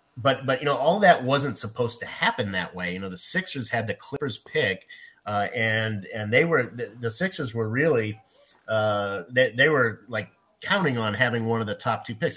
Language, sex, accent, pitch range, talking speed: English, male, American, 105-125 Hz, 215 wpm